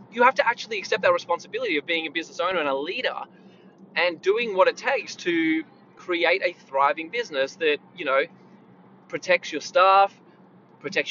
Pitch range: 145-205 Hz